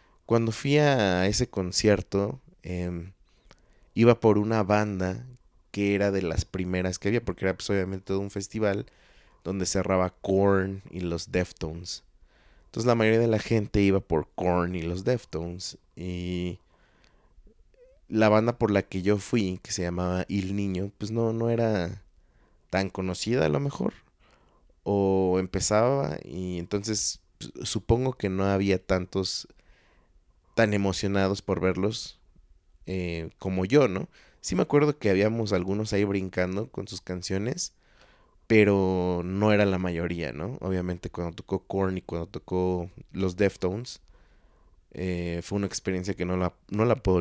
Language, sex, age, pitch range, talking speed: Spanish, male, 20-39, 90-105 Hz, 145 wpm